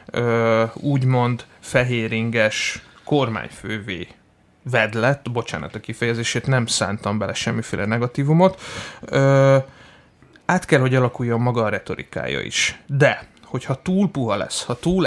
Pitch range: 115-135 Hz